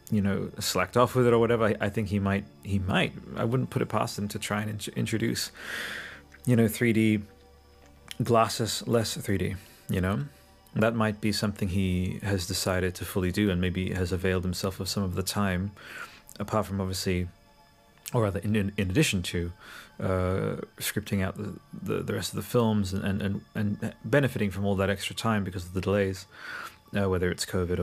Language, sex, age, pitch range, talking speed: English, male, 30-49, 95-110 Hz, 195 wpm